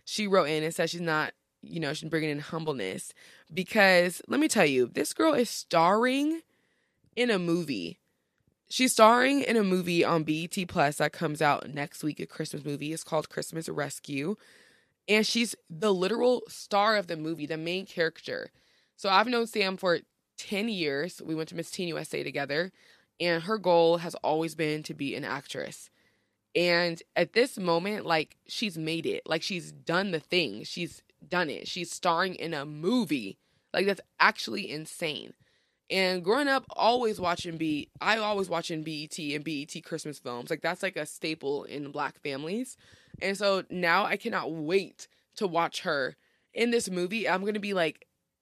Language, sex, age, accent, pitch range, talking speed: English, female, 20-39, American, 155-200 Hz, 180 wpm